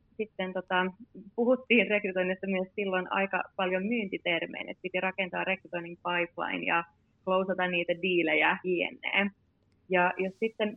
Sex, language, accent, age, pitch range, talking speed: female, Finnish, native, 30-49, 185-215 Hz, 125 wpm